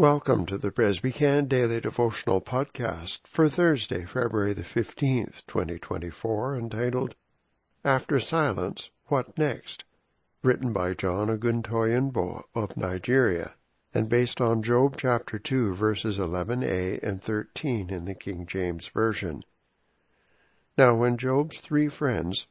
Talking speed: 115 wpm